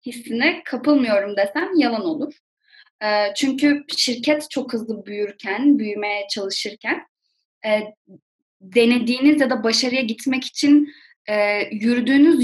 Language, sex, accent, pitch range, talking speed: Turkish, female, native, 215-285 Hz, 90 wpm